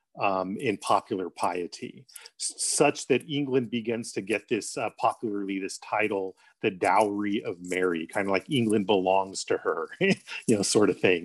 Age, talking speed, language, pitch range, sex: 40-59, 165 wpm, English, 100-130 Hz, male